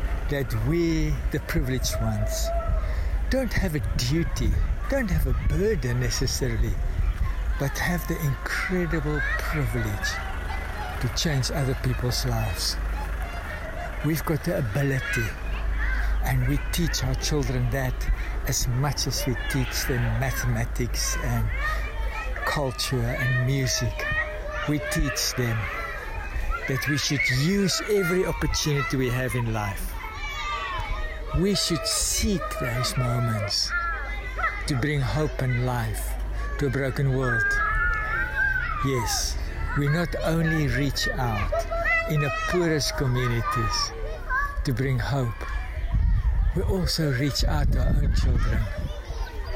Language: English